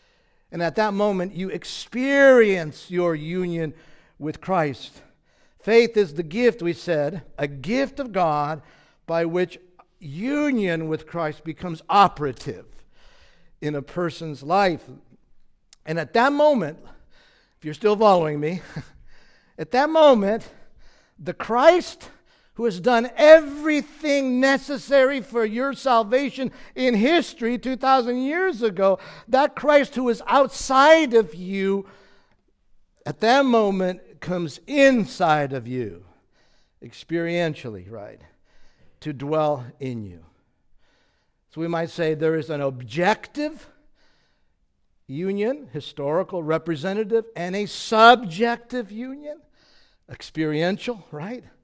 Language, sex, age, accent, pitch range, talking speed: English, male, 50-69, American, 155-255 Hz, 110 wpm